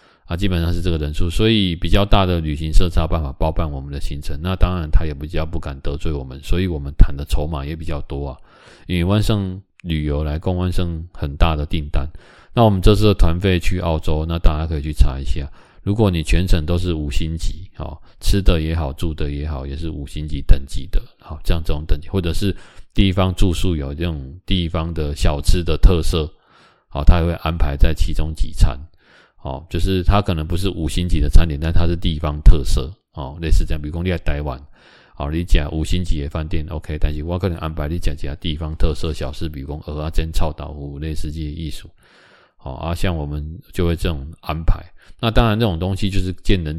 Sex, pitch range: male, 75-90 Hz